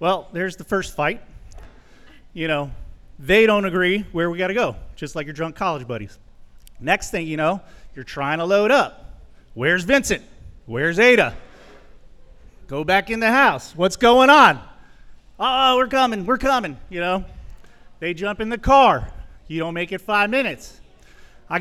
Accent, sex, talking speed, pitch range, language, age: American, male, 165 wpm, 165-220 Hz, English, 30-49